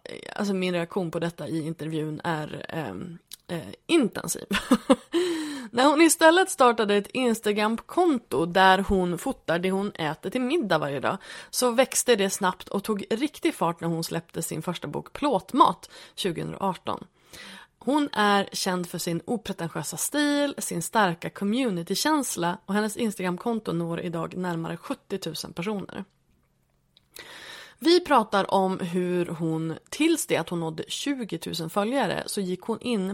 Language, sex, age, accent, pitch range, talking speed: Swedish, female, 20-39, native, 175-245 Hz, 145 wpm